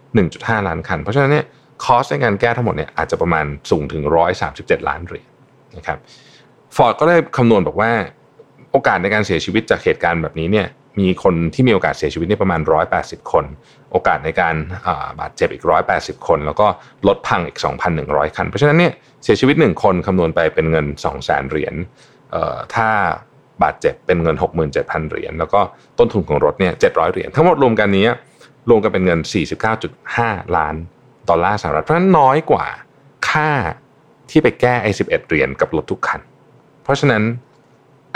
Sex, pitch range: male, 90-140 Hz